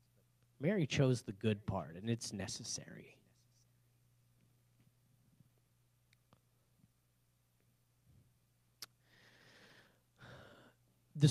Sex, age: male, 30-49